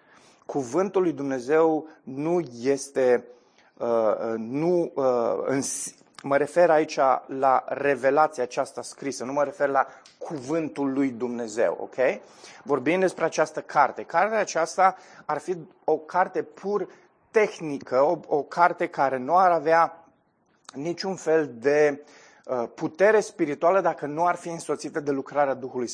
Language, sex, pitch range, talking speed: Romanian, male, 140-175 Hz, 120 wpm